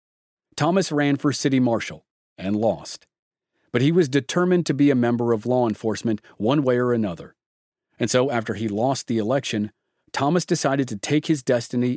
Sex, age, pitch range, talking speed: male, 40-59, 115-150 Hz, 175 wpm